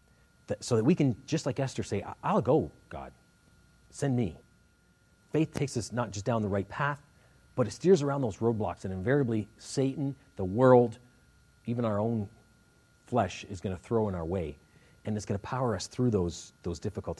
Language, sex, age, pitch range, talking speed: English, male, 40-59, 95-130 Hz, 190 wpm